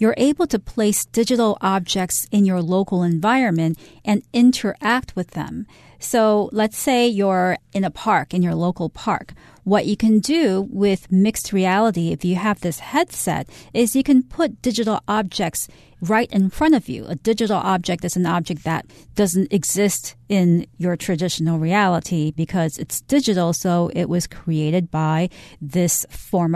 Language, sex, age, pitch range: Chinese, female, 40-59, 175-220 Hz